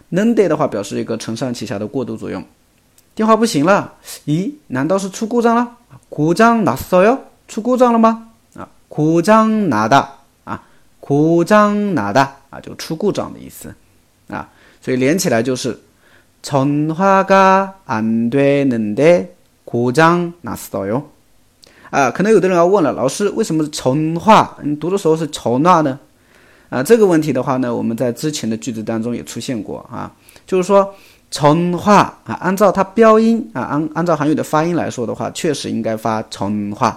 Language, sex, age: Chinese, male, 30-49